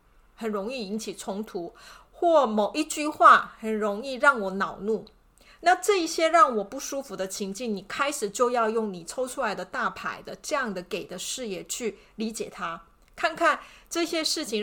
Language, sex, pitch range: Chinese, female, 200-255 Hz